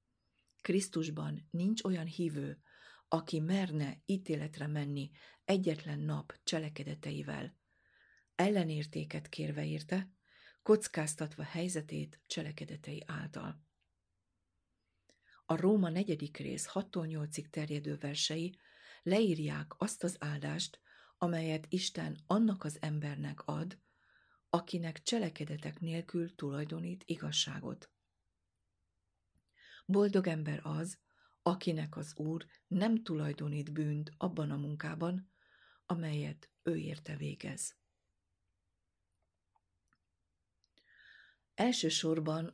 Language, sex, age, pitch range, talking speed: Hungarian, female, 50-69, 145-175 Hz, 80 wpm